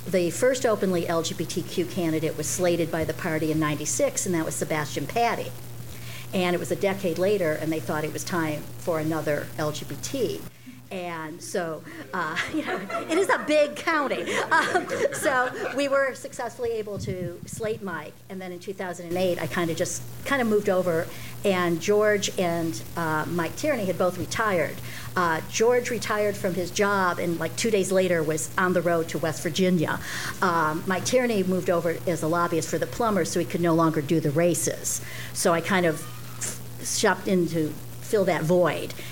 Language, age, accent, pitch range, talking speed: English, 60-79, American, 155-190 Hz, 180 wpm